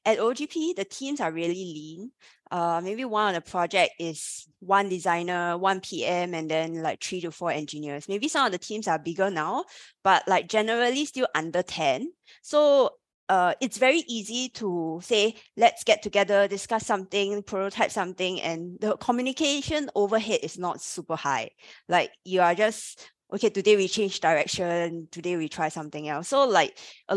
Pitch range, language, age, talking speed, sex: 170-215 Hz, English, 20-39, 170 wpm, female